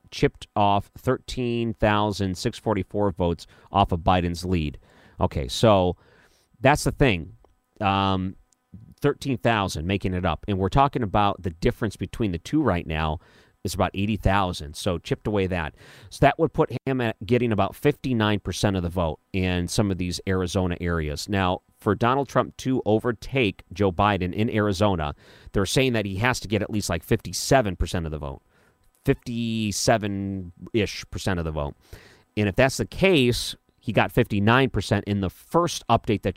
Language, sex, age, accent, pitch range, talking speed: English, male, 40-59, American, 90-115 Hz, 160 wpm